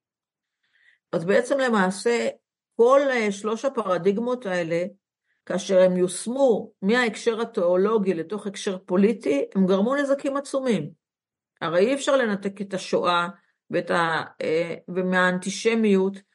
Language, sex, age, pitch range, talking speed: Hebrew, female, 50-69, 185-240 Hz, 100 wpm